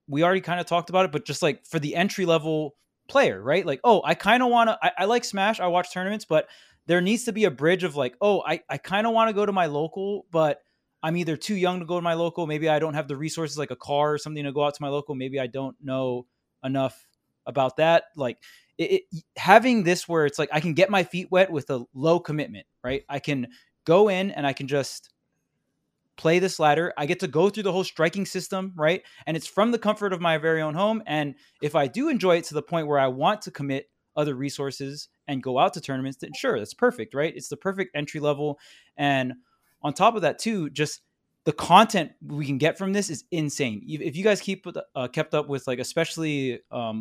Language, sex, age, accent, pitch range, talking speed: English, male, 20-39, American, 145-185 Hz, 240 wpm